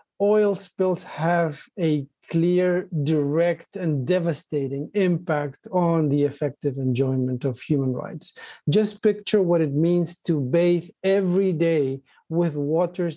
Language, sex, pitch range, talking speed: English, male, 150-180 Hz, 125 wpm